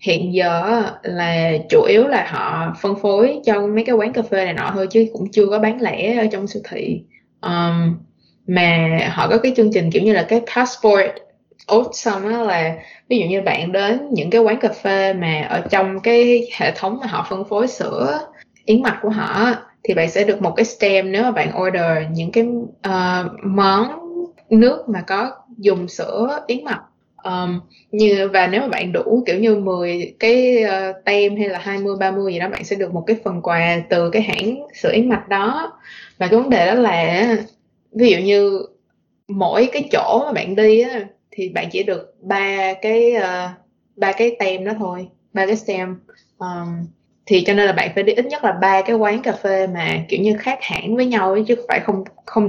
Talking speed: 205 wpm